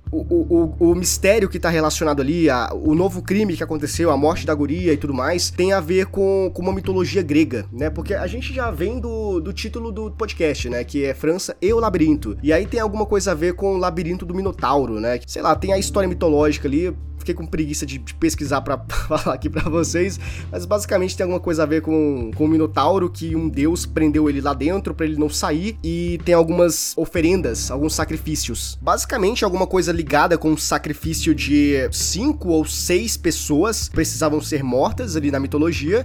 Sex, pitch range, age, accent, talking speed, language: male, 150-195 Hz, 20-39, Brazilian, 210 wpm, Portuguese